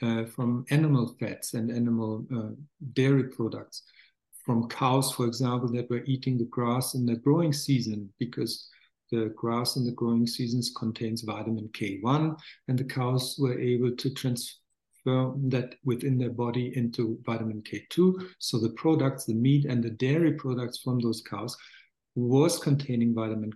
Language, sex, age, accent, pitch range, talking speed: English, male, 50-69, German, 115-140 Hz, 155 wpm